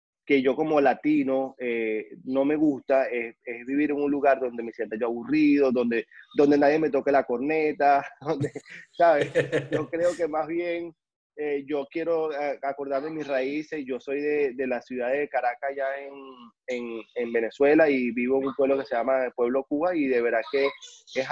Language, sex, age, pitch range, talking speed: Spanish, male, 20-39, 125-150 Hz, 190 wpm